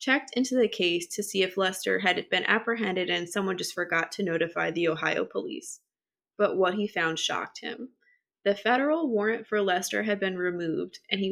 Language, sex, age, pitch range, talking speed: English, female, 20-39, 185-230 Hz, 190 wpm